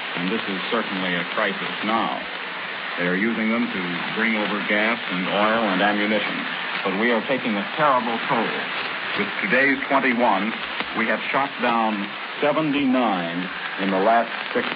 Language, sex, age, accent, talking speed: English, male, 50-69, American, 155 wpm